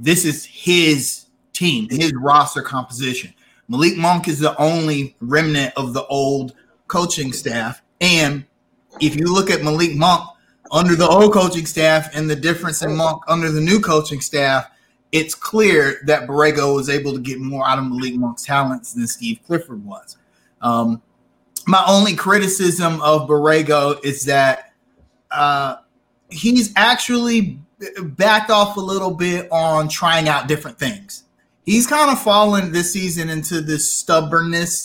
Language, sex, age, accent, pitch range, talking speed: English, male, 30-49, American, 135-175 Hz, 150 wpm